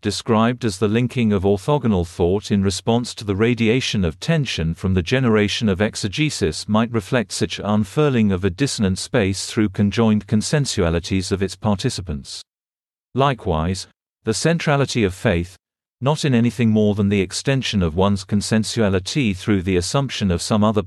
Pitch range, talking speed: 95-120 Hz, 155 wpm